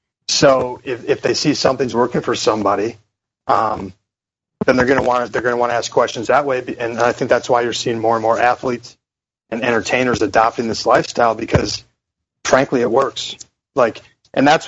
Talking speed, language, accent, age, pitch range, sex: 190 wpm, English, American, 30-49, 120-150 Hz, male